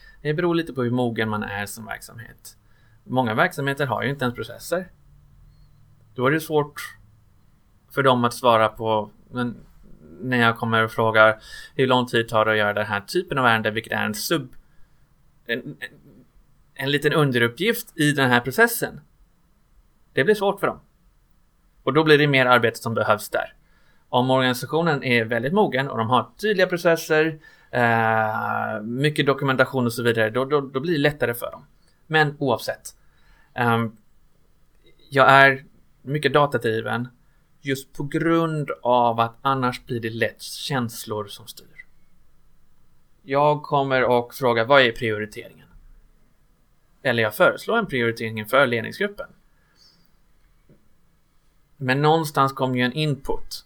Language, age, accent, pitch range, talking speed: Swedish, 20-39, native, 115-150 Hz, 150 wpm